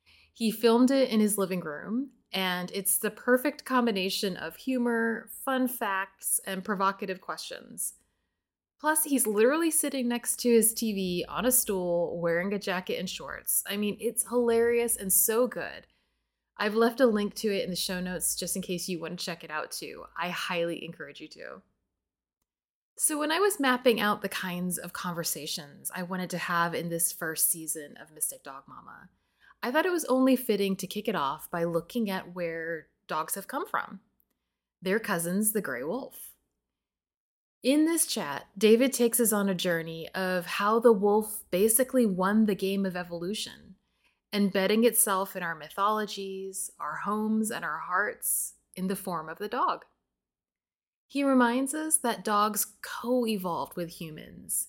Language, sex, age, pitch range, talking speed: English, female, 20-39, 175-230 Hz, 170 wpm